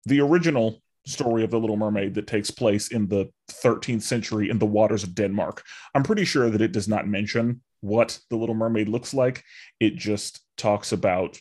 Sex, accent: male, American